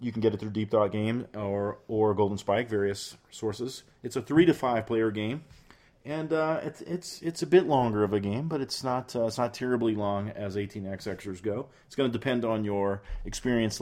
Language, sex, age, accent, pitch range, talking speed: English, male, 40-59, American, 105-140 Hz, 215 wpm